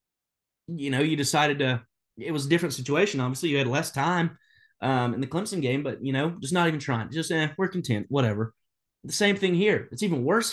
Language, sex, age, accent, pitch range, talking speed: English, male, 20-39, American, 120-165 Hz, 230 wpm